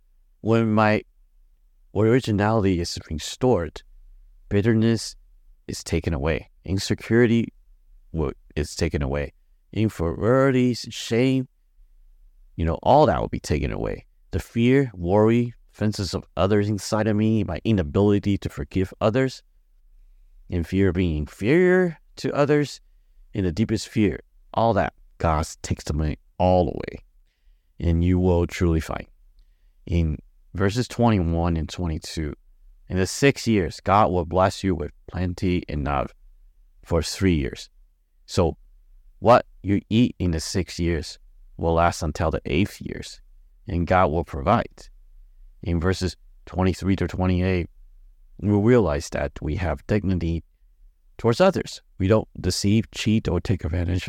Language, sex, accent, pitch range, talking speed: English, male, American, 85-110 Hz, 130 wpm